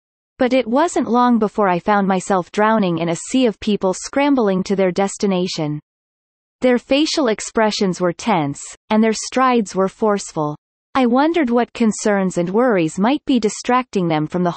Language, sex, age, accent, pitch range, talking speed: English, female, 30-49, American, 185-250 Hz, 165 wpm